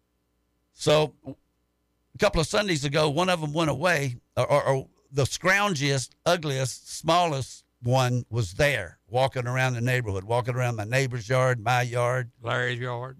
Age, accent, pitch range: 60-79, American, 110-145 Hz